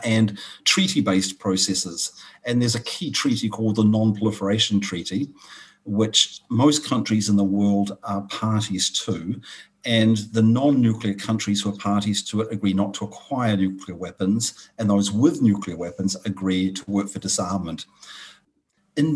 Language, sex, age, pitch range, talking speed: English, male, 50-69, 100-120 Hz, 145 wpm